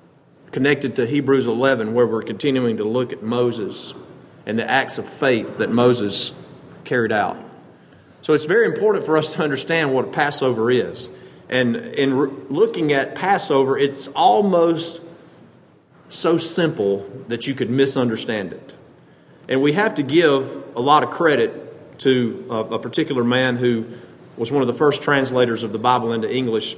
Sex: male